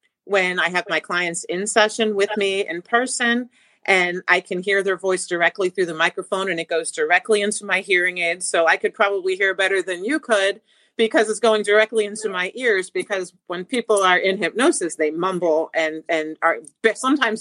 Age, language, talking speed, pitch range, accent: 40-59, English, 195 wpm, 185-225 Hz, American